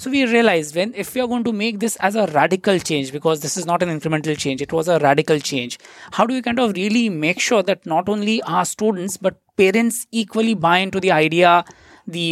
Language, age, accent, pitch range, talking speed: English, 20-39, Indian, 175-220 Hz, 235 wpm